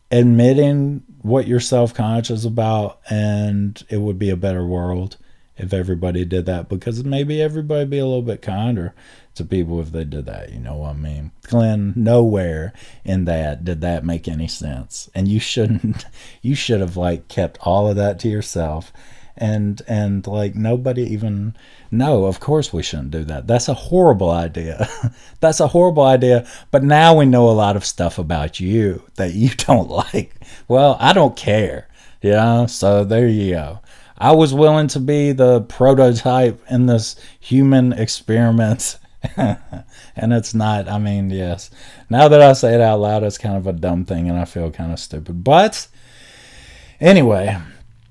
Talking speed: 175 wpm